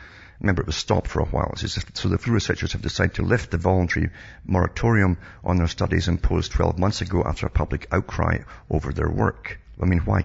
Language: English